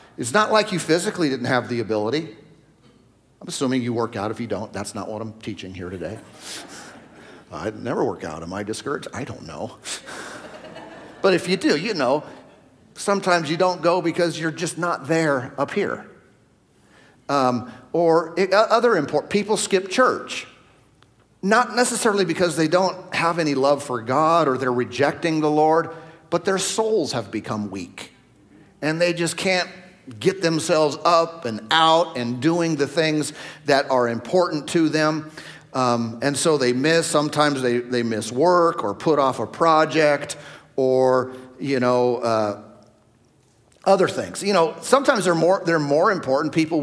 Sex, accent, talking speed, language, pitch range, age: male, American, 165 wpm, English, 125-170 Hz, 50-69